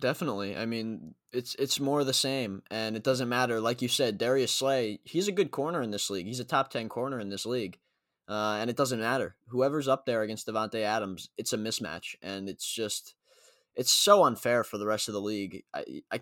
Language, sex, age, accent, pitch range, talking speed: English, male, 20-39, American, 105-130 Hz, 220 wpm